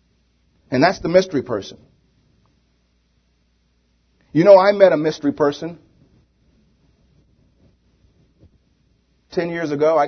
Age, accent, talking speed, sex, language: 40-59, American, 95 wpm, male, English